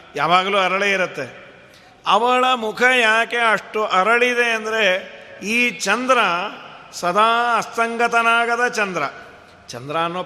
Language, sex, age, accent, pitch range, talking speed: Kannada, male, 50-69, native, 190-230 Hz, 95 wpm